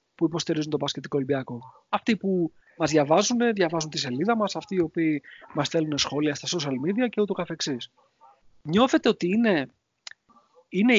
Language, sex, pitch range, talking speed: Greek, male, 135-180 Hz, 160 wpm